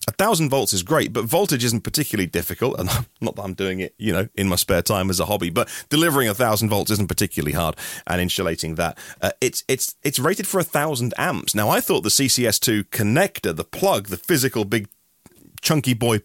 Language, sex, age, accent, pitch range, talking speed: English, male, 30-49, British, 95-135 Hz, 200 wpm